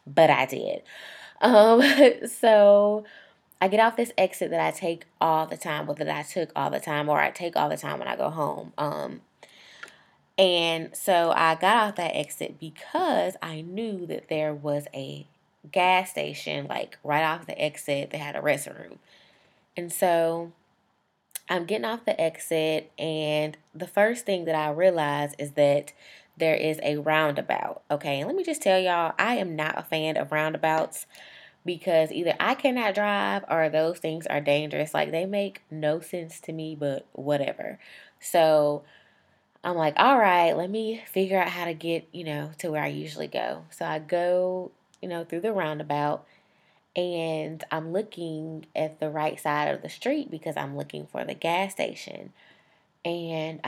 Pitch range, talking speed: 150-185 Hz, 175 wpm